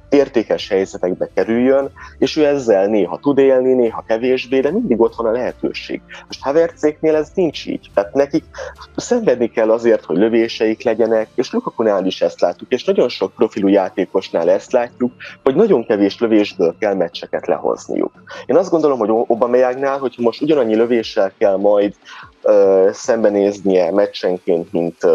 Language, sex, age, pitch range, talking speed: Hungarian, male, 20-39, 110-135 Hz, 155 wpm